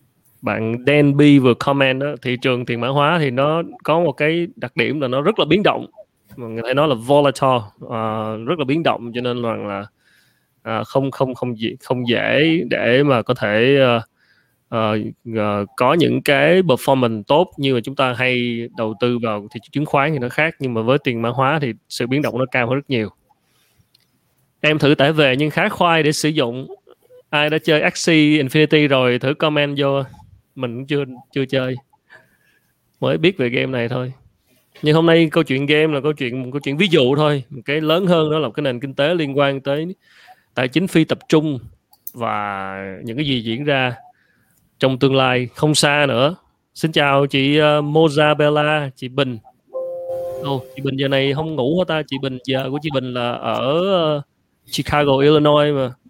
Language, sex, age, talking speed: Vietnamese, male, 20-39, 200 wpm